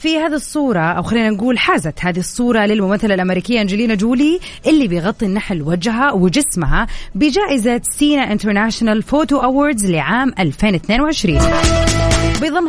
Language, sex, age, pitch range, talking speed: Arabic, female, 30-49, 180-255 Hz, 125 wpm